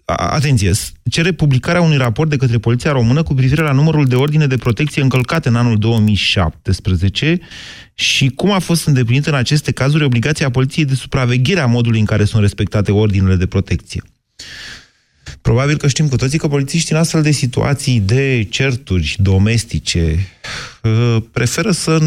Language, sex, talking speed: Romanian, male, 160 wpm